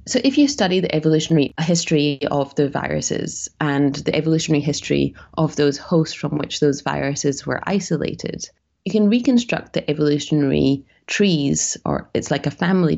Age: 30-49